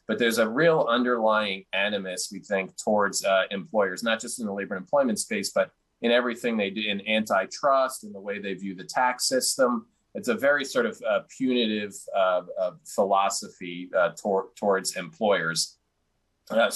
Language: English